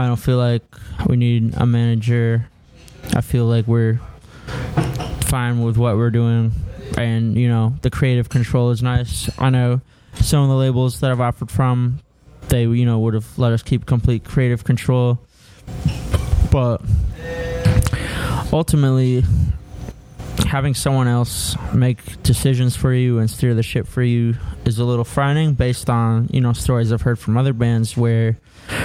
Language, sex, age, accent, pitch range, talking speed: English, male, 20-39, American, 115-130 Hz, 160 wpm